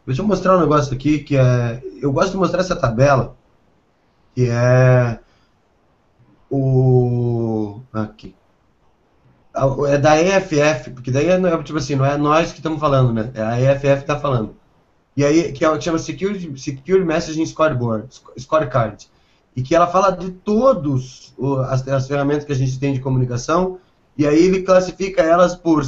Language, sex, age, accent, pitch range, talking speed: Portuguese, male, 20-39, Brazilian, 130-160 Hz, 165 wpm